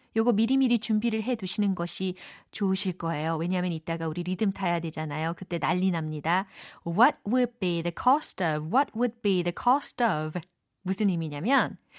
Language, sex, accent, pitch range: Korean, female, native, 175-270 Hz